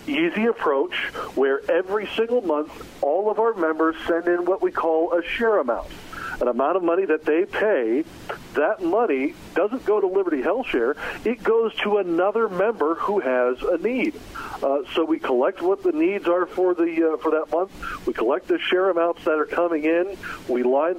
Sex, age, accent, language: male, 50-69, American, English